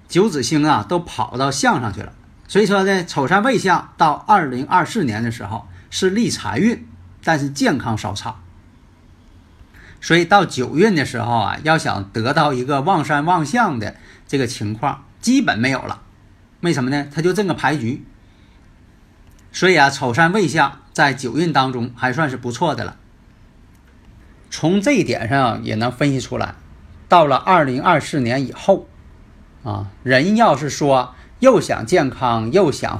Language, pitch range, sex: Chinese, 105-150 Hz, male